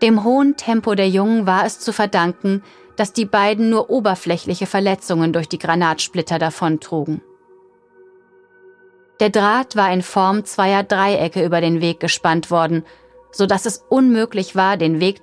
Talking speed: 150 wpm